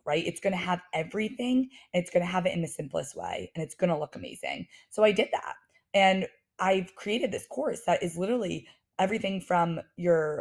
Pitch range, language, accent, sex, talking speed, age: 165-215 Hz, English, American, female, 215 wpm, 20-39